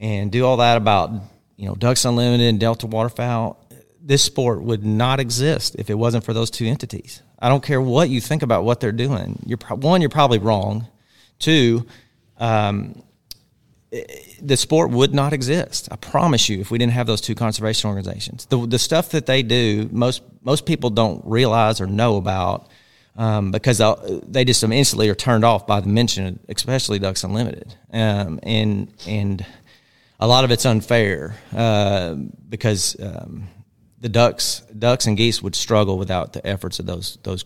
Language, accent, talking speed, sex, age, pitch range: English, American, 180 wpm, male, 40-59, 105-125 Hz